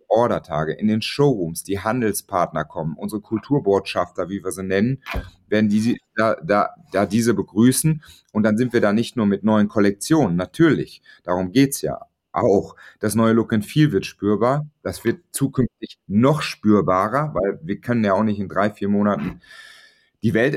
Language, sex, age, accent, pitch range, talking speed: German, male, 40-59, German, 105-130 Hz, 175 wpm